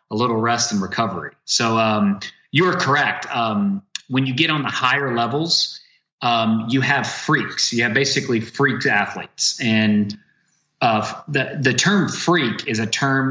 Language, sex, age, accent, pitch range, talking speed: English, male, 30-49, American, 115-145 Hz, 160 wpm